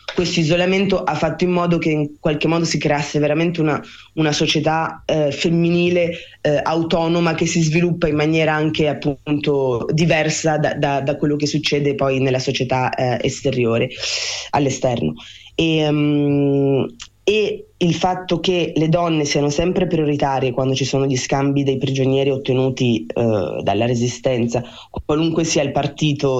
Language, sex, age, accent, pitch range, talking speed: Italian, female, 20-39, native, 140-165 Hz, 150 wpm